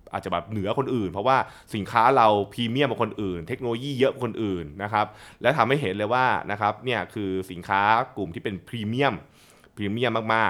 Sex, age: male, 20-39